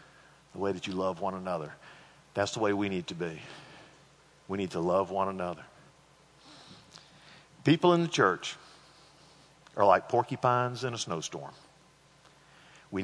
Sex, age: male, 50-69